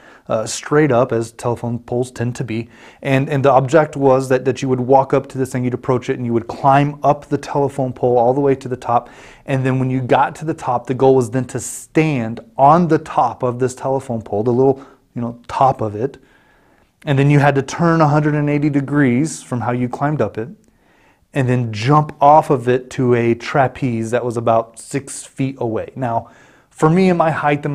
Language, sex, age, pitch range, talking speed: English, male, 30-49, 120-145 Hz, 225 wpm